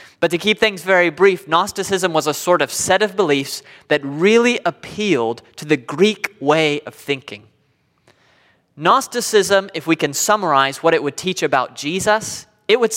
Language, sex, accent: English, male, American